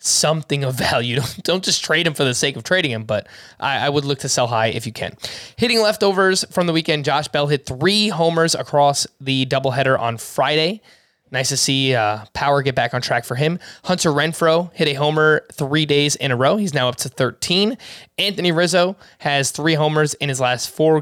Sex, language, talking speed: male, English, 210 wpm